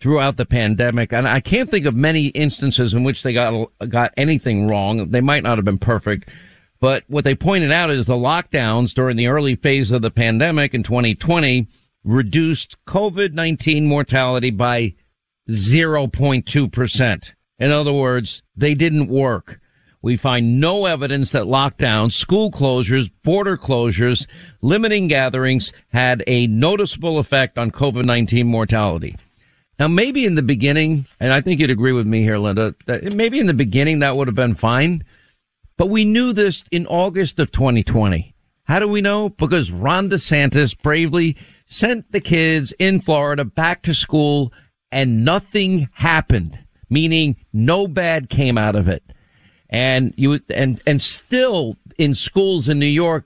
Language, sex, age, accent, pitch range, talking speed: English, male, 50-69, American, 120-160 Hz, 160 wpm